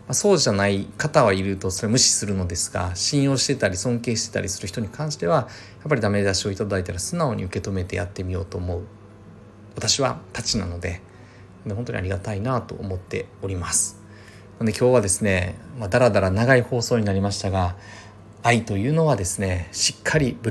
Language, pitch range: Japanese, 95-120 Hz